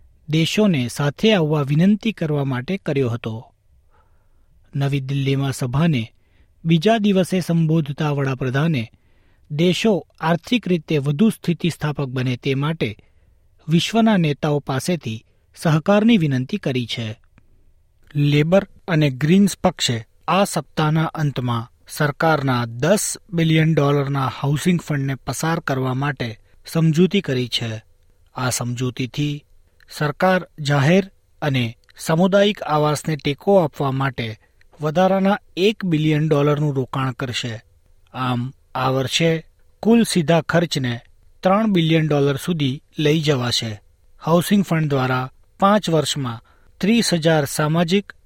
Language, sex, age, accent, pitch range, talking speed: Gujarati, male, 40-59, native, 125-170 Hz, 105 wpm